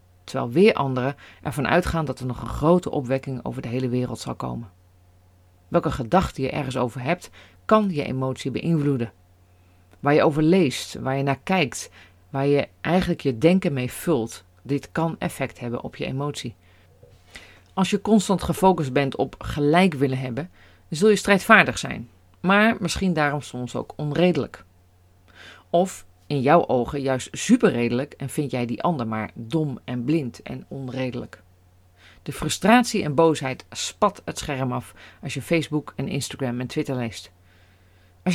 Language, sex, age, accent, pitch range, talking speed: Dutch, female, 40-59, Dutch, 105-165 Hz, 160 wpm